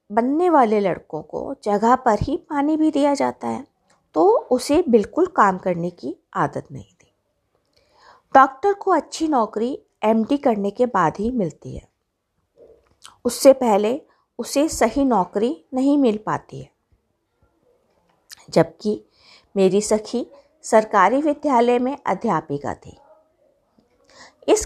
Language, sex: Hindi, female